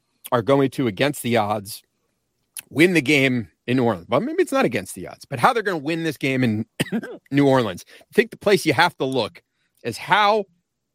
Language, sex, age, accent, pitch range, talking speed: English, male, 40-59, American, 130-170 Hz, 220 wpm